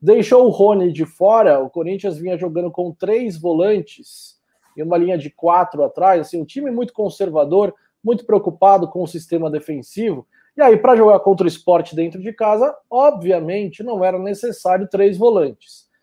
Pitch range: 185-250 Hz